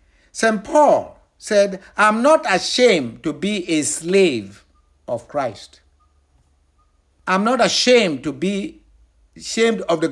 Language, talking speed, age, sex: English, 120 wpm, 60-79, male